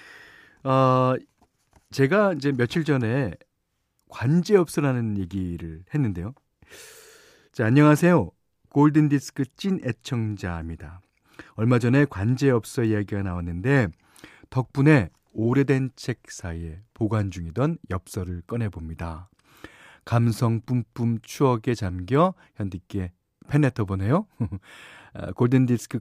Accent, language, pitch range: native, Korean, 100-155 Hz